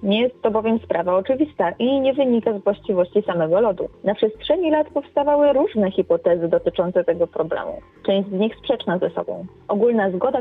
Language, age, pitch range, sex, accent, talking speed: Polish, 30-49, 190-265 Hz, female, native, 175 wpm